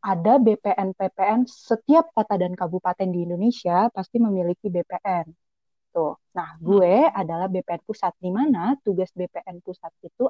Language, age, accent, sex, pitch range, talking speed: Indonesian, 30-49, native, female, 180-235 Hz, 140 wpm